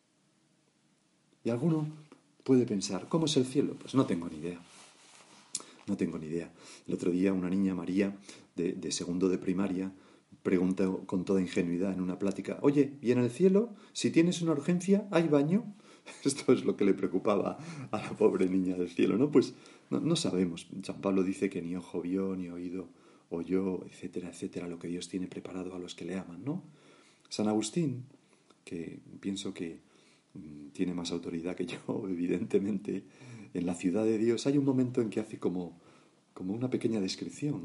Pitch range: 95-130 Hz